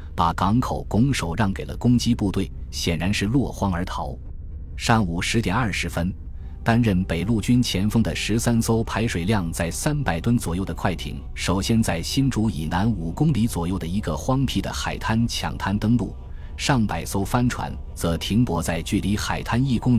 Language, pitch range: Chinese, 80-110 Hz